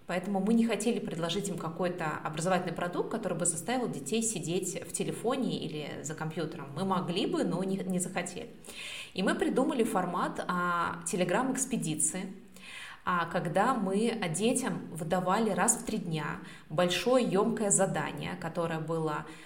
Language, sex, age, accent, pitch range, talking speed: Russian, female, 20-39, native, 175-220 Hz, 135 wpm